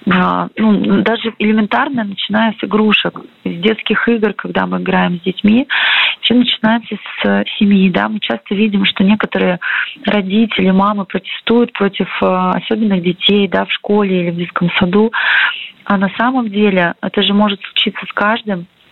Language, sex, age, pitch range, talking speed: Russian, female, 30-49, 180-215 Hz, 150 wpm